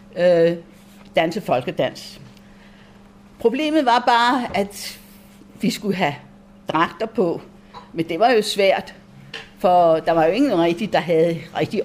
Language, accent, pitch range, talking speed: Danish, native, 175-240 Hz, 130 wpm